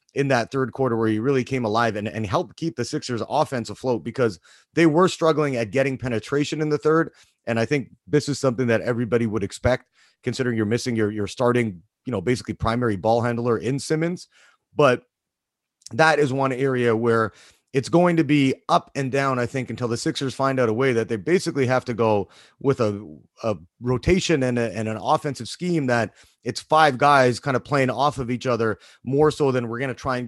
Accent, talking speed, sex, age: American, 215 wpm, male, 30-49